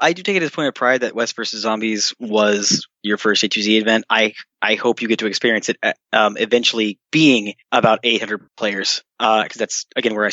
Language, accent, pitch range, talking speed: English, American, 115-155 Hz, 220 wpm